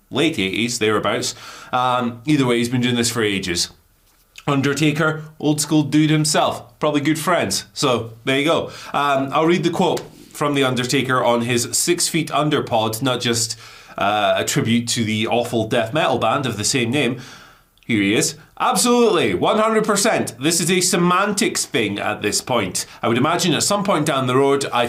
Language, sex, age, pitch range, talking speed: English, male, 30-49, 115-155 Hz, 185 wpm